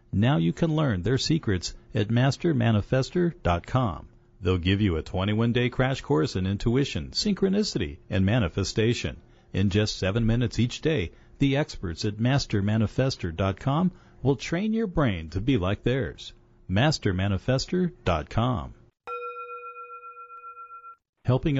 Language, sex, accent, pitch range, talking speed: English, male, American, 95-135 Hz, 110 wpm